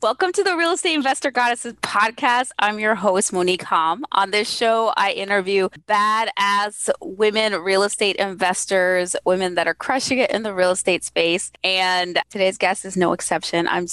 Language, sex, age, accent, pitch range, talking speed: English, female, 20-39, American, 170-230 Hz, 170 wpm